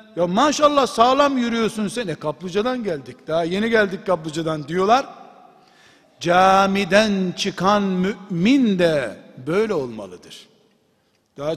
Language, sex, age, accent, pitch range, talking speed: Turkish, male, 60-79, native, 190-230 Hz, 105 wpm